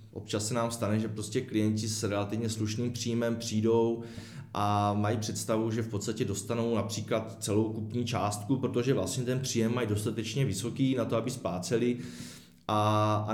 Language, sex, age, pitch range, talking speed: Czech, male, 20-39, 100-120 Hz, 155 wpm